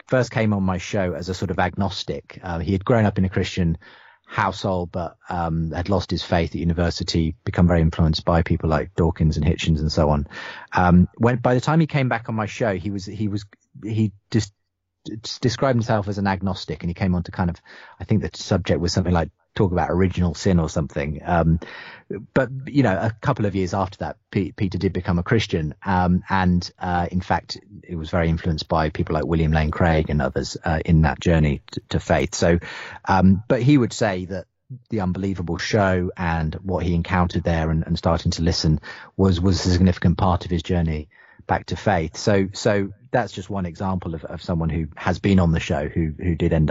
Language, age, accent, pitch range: English, 30-49, British, 85-105 Hz